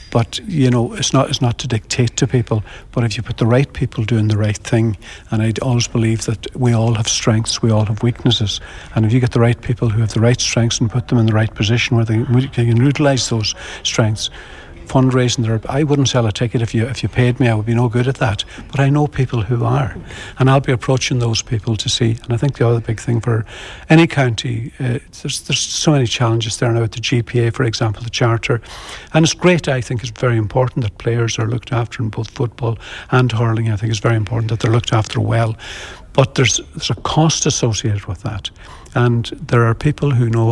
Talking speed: 235 wpm